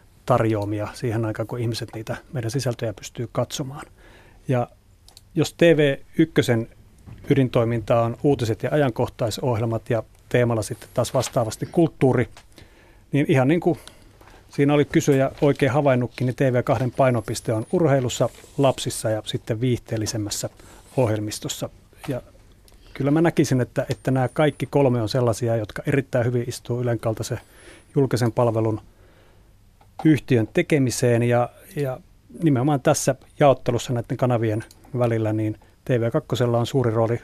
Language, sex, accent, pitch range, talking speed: Finnish, male, native, 110-135 Hz, 120 wpm